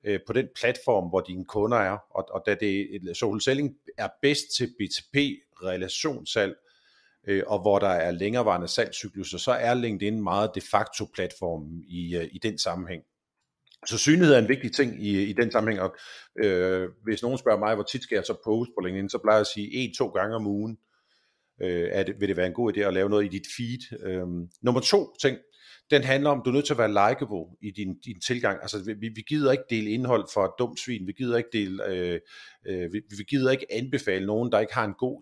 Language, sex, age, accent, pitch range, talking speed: Danish, male, 50-69, native, 95-125 Hz, 225 wpm